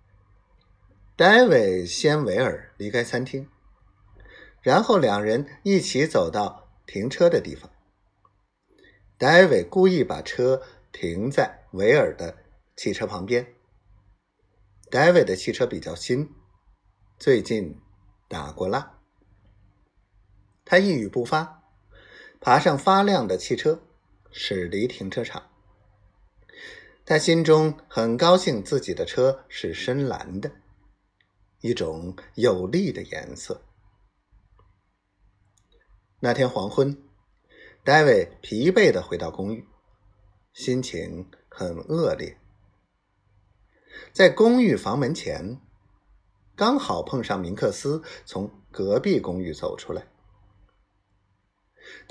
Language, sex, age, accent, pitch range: Chinese, male, 50-69, native, 100-155 Hz